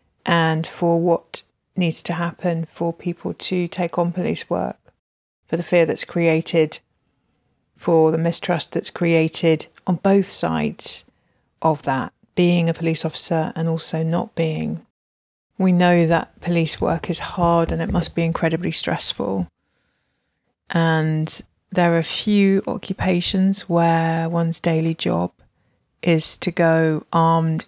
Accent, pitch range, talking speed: British, 165-185 Hz, 135 wpm